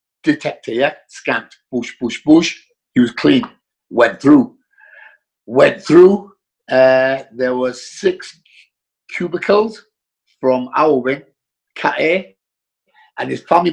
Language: English